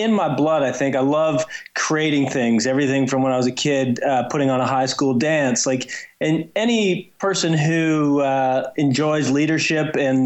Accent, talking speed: American, 185 wpm